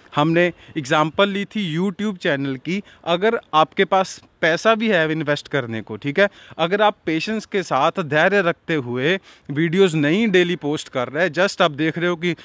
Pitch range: 155-210 Hz